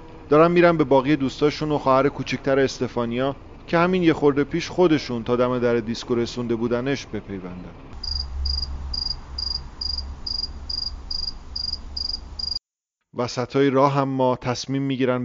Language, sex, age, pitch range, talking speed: English, male, 40-59, 110-140 Hz, 105 wpm